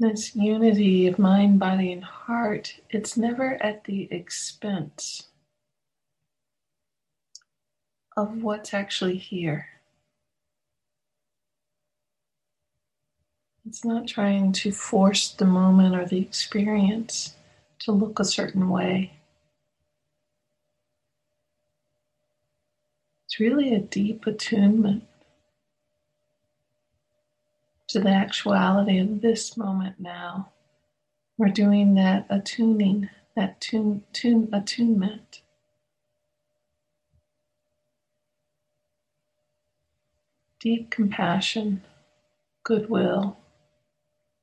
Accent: American